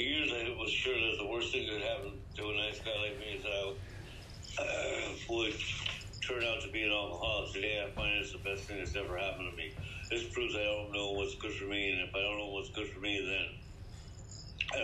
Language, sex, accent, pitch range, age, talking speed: English, male, American, 100-110 Hz, 60-79, 235 wpm